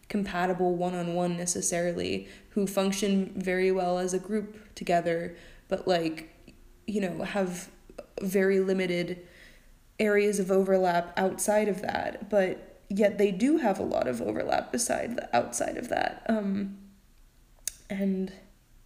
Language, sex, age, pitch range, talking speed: English, female, 20-39, 180-215 Hz, 135 wpm